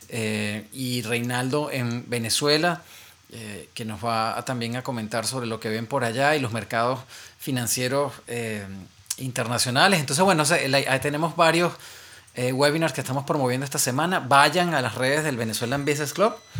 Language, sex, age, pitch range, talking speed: English, male, 30-49, 115-150 Hz, 170 wpm